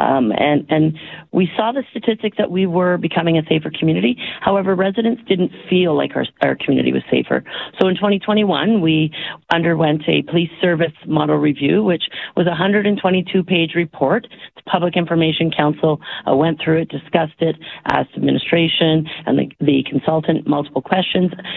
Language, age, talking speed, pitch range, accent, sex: English, 40-59, 160 wpm, 155-190 Hz, American, female